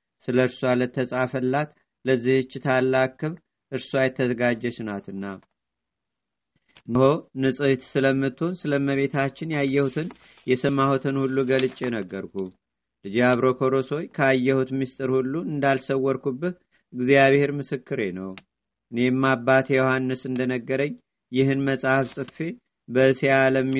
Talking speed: 85 wpm